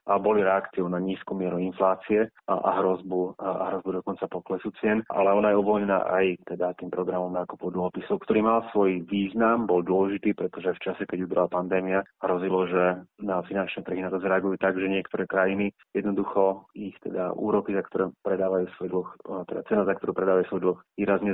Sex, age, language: male, 30-49, Slovak